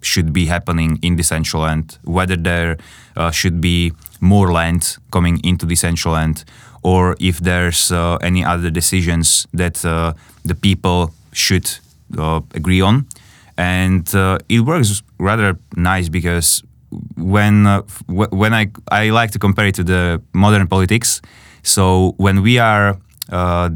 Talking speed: 150 wpm